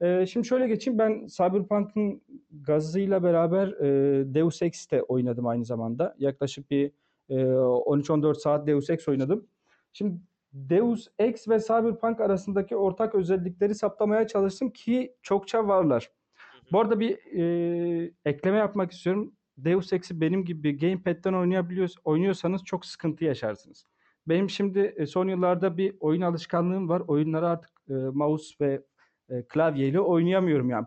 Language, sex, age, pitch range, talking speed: Turkish, male, 40-59, 150-200 Hz, 120 wpm